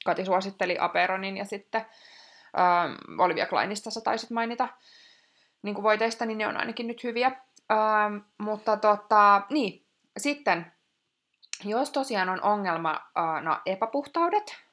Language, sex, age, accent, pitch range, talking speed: Finnish, female, 20-39, native, 175-225 Hz, 115 wpm